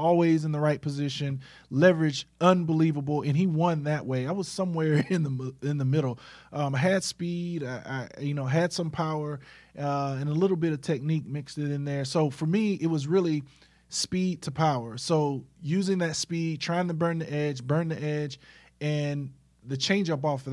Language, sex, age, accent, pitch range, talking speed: English, male, 20-39, American, 135-160 Hz, 200 wpm